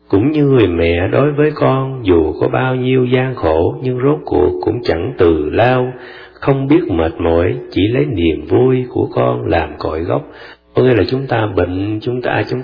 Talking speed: 200 wpm